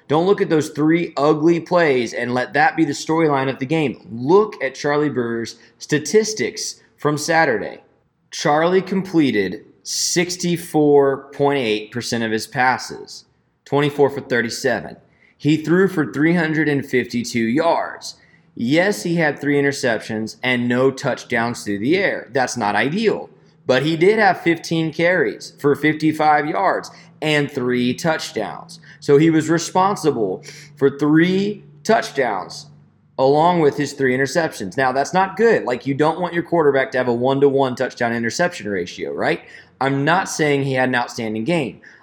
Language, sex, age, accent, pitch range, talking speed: English, male, 20-39, American, 135-170 Hz, 145 wpm